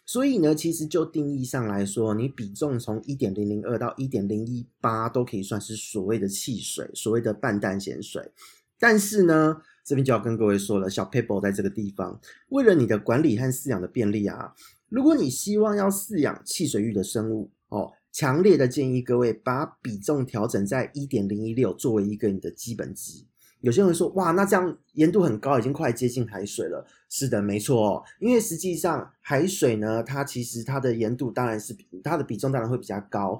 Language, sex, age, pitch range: Chinese, male, 30-49, 110-155 Hz